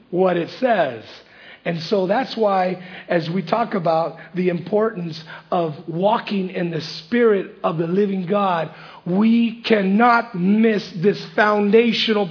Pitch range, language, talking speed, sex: 175-225 Hz, English, 130 wpm, male